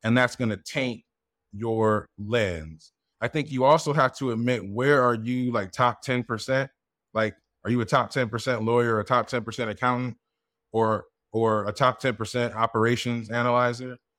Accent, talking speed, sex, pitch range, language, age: American, 160 wpm, male, 110-130 Hz, English, 20-39